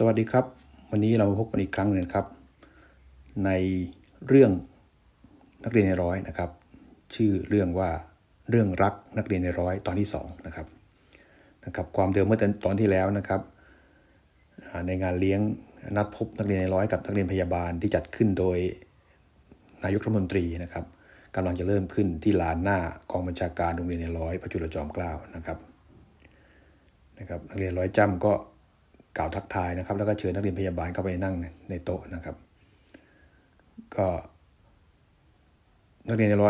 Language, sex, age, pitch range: Thai, male, 60-79, 90-105 Hz